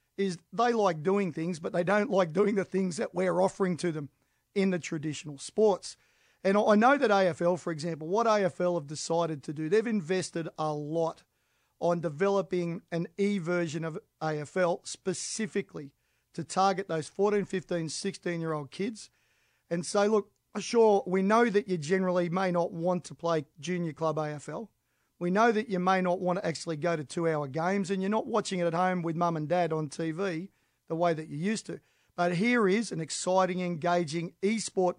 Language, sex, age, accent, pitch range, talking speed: English, male, 40-59, Australian, 165-195 Hz, 185 wpm